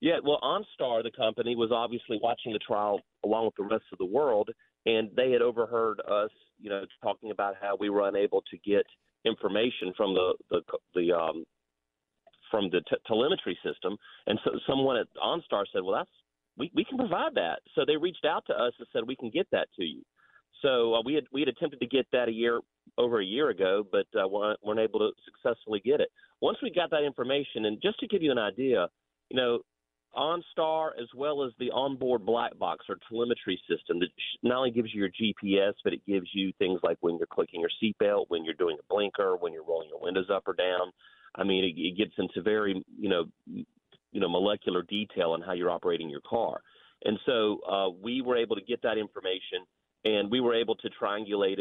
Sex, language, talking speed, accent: male, English, 215 wpm, American